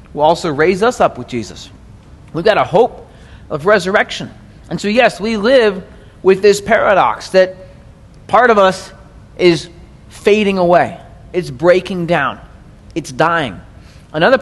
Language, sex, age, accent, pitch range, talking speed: English, male, 30-49, American, 145-200 Hz, 140 wpm